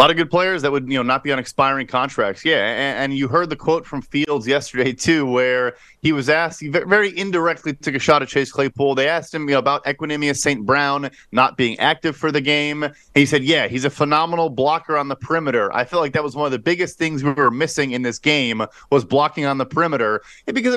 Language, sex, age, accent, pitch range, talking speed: English, male, 30-49, American, 140-170 Hz, 245 wpm